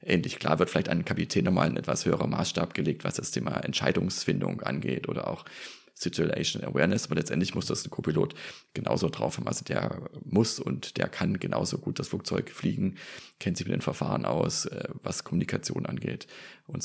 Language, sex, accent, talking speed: German, male, German, 180 wpm